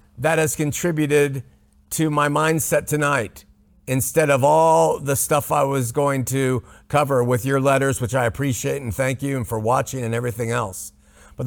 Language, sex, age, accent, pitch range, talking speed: English, male, 50-69, American, 120-150 Hz, 175 wpm